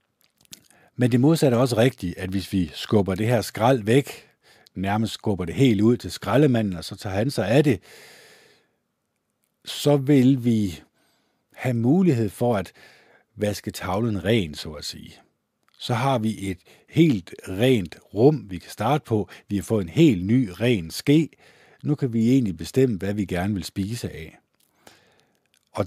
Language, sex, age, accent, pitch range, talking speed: Danish, male, 60-79, native, 95-130 Hz, 165 wpm